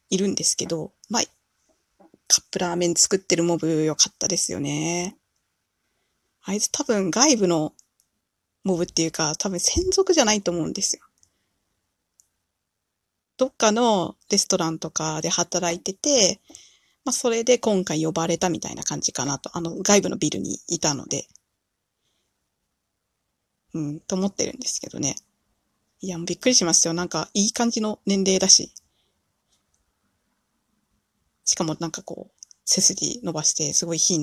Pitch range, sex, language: 160-205 Hz, female, Japanese